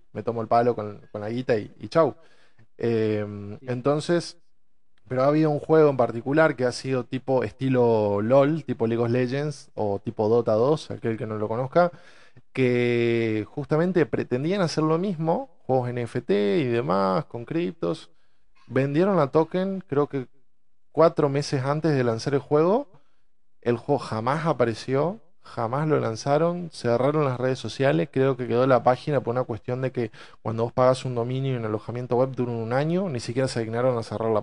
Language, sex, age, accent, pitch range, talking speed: Spanish, male, 20-39, Argentinian, 115-150 Hz, 180 wpm